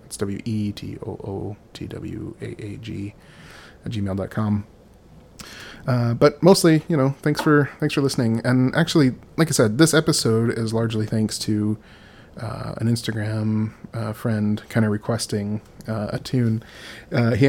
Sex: male